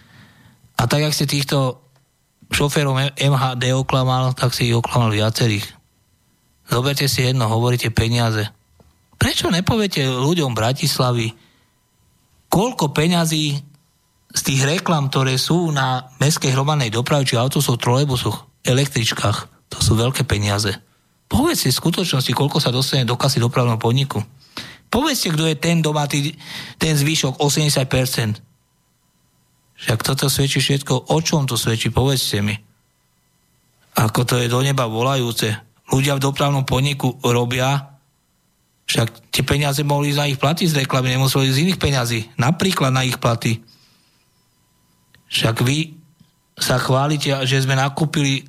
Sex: male